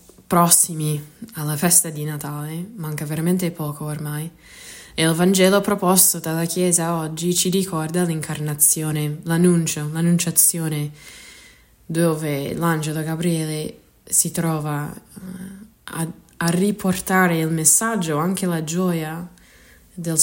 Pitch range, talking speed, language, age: 155-190 Hz, 105 wpm, Italian, 20-39